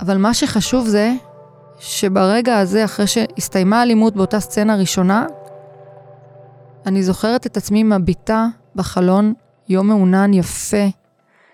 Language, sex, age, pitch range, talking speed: Hebrew, female, 20-39, 195-255 Hz, 110 wpm